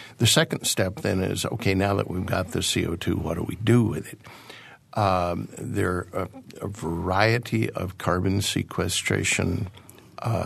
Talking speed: 160 wpm